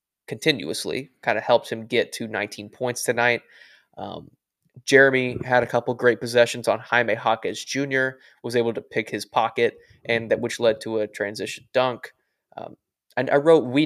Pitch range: 115-130 Hz